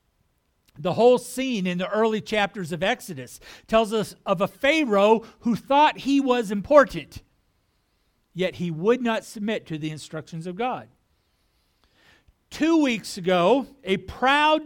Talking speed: 140 wpm